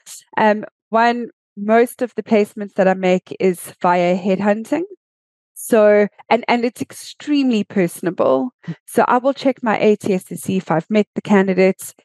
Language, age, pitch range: English, 20-39, 190-250 Hz